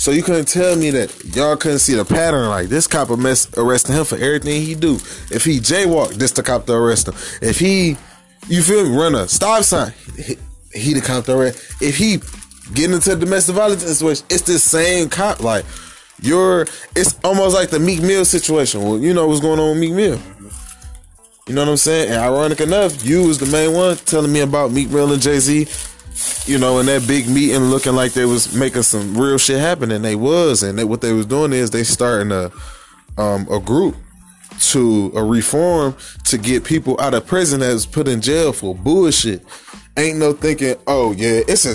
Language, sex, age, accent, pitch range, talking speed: English, male, 20-39, American, 115-155 Hz, 215 wpm